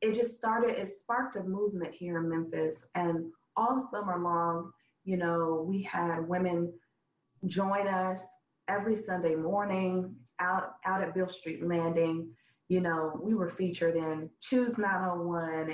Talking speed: 145 wpm